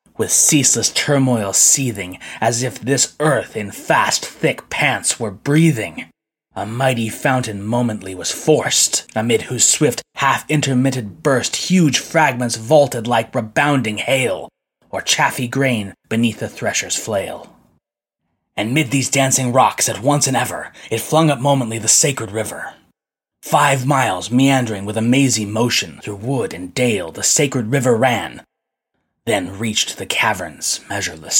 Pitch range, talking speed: 110-140 Hz, 140 wpm